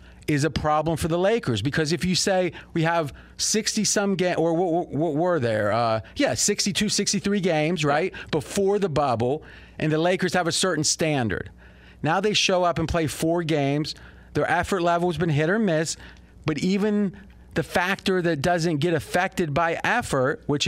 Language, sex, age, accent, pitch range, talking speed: English, male, 40-59, American, 150-200 Hz, 185 wpm